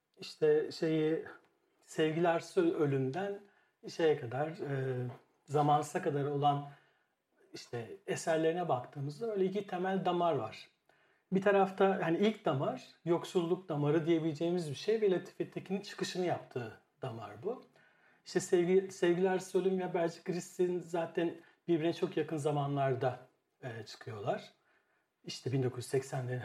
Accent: native